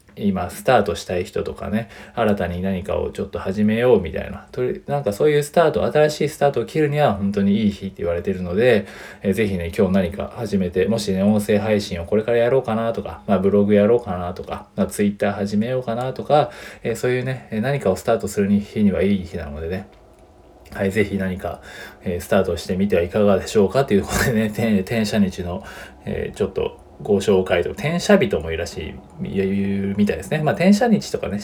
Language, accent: Japanese, native